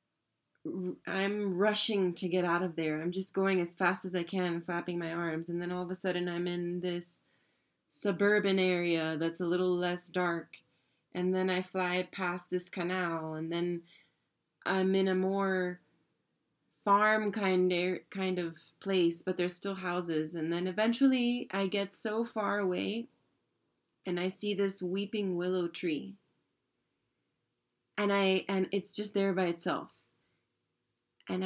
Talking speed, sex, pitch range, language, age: 150 wpm, female, 180-215 Hz, English, 20-39